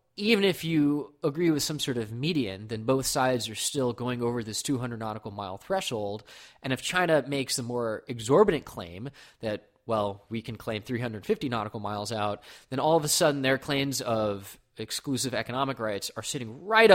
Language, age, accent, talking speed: English, 20-39, American, 185 wpm